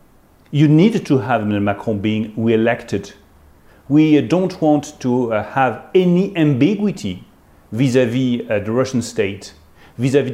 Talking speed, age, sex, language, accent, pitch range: 115 wpm, 40-59, male, English, French, 115-145 Hz